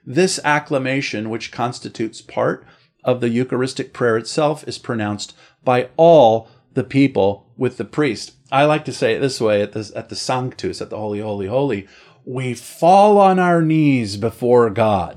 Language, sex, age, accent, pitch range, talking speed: English, male, 40-59, American, 110-145 Hz, 165 wpm